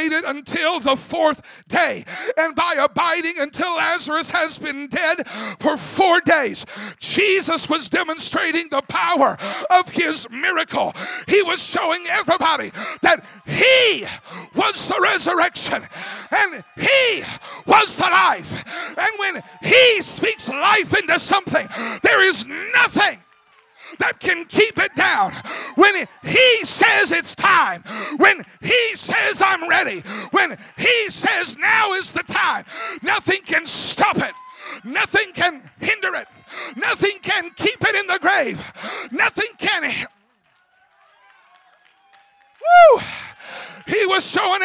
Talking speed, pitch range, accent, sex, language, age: 120 wpm, 330-410 Hz, American, male, English, 40-59